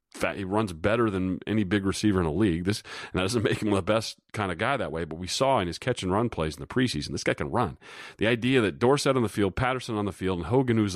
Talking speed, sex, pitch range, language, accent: 280 wpm, male, 90-115 Hz, English, American